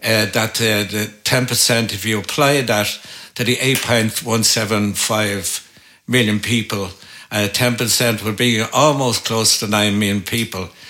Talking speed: 125 wpm